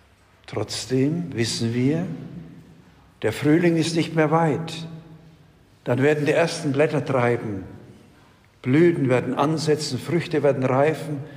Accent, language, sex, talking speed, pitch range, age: German, German, male, 110 wpm, 115-165 Hz, 50-69